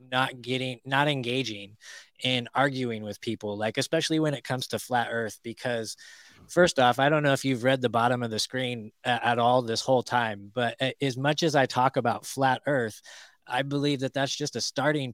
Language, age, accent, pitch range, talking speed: English, 20-39, American, 115-135 Hz, 200 wpm